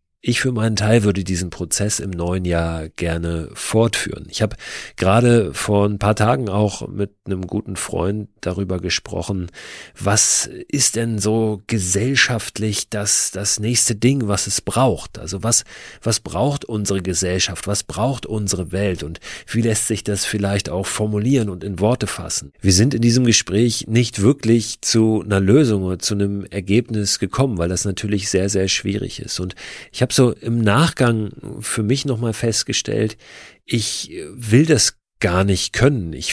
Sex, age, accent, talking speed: male, 40-59, German, 170 wpm